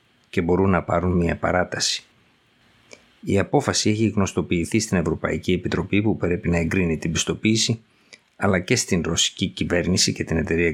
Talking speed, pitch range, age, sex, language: 150 wpm, 85-105 Hz, 50-69, male, Greek